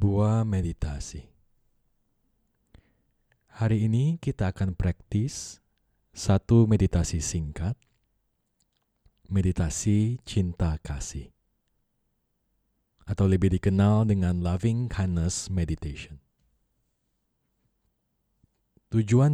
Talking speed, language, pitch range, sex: 65 wpm, Indonesian, 90-110 Hz, male